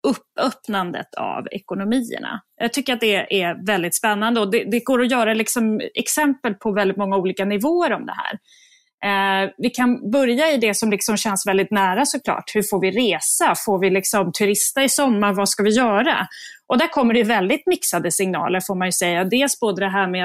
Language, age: Swedish, 30-49